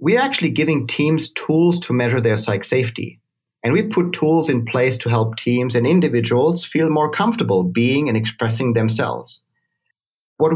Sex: male